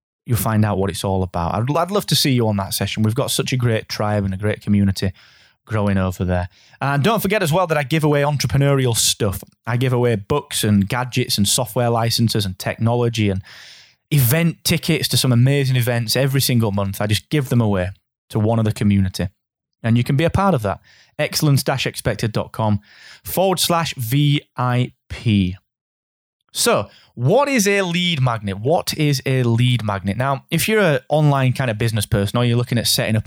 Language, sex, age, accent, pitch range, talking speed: English, male, 20-39, British, 105-140 Hz, 195 wpm